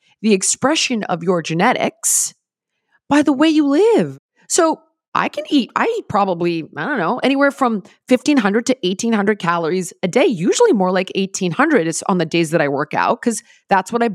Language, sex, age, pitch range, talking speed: English, female, 30-49, 190-285 Hz, 180 wpm